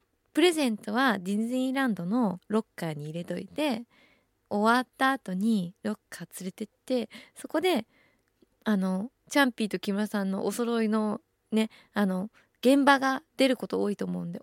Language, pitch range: Japanese, 205-285 Hz